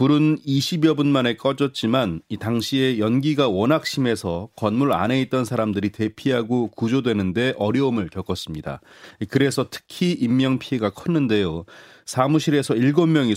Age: 30-49